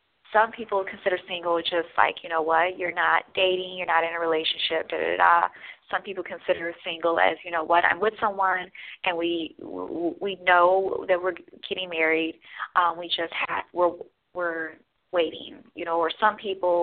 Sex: female